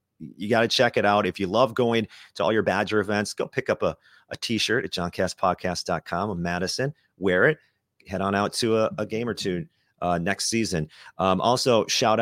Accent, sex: American, male